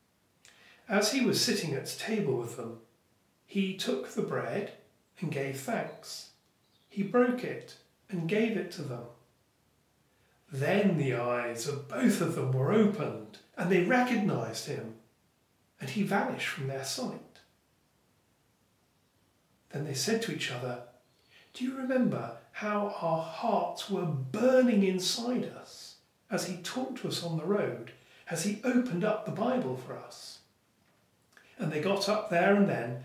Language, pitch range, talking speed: English, 145-210 Hz, 145 wpm